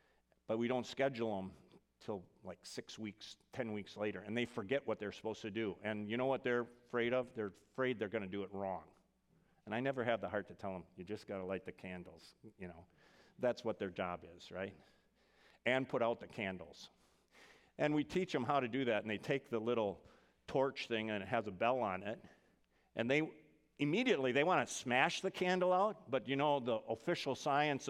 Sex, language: male, English